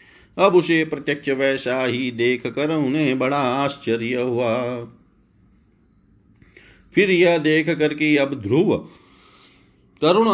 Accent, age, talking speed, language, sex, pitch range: native, 50-69, 105 wpm, Hindi, male, 130-145 Hz